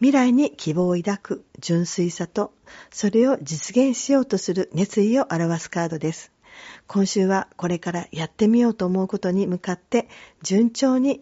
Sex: female